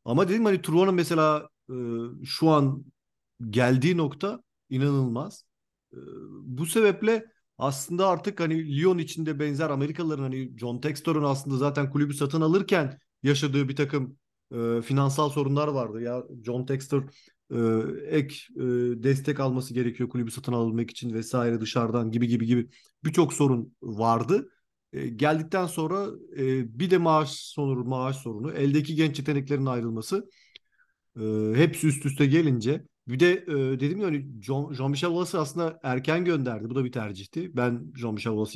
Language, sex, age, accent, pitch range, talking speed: Turkish, male, 40-59, native, 125-155 Hz, 150 wpm